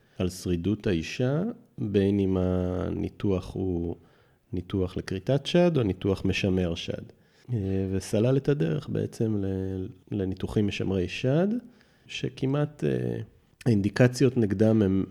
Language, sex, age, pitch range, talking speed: Hebrew, male, 30-49, 90-115 Hz, 100 wpm